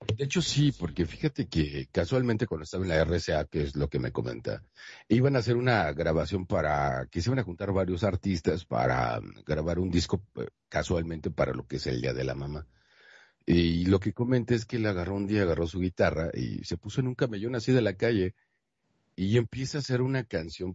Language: Spanish